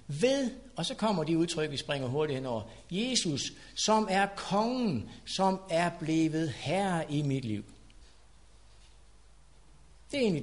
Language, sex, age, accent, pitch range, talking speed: Danish, male, 60-79, native, 120-180 Hz, 140 wpm